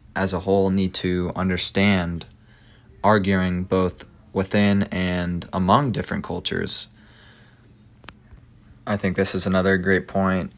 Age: 20-39